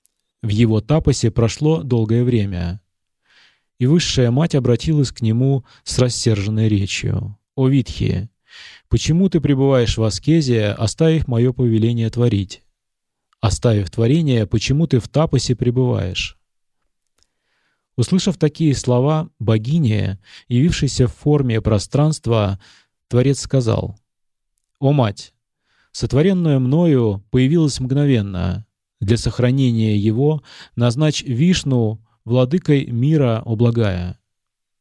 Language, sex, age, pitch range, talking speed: Russian, male, 20-39, 110-140 Hz, 100 wpm